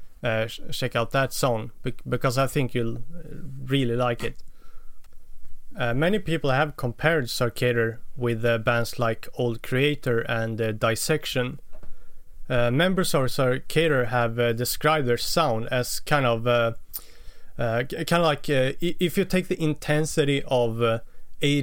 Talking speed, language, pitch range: 150 wpm, English, 115-145 Hz